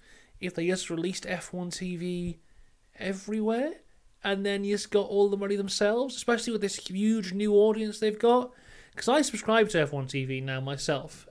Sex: male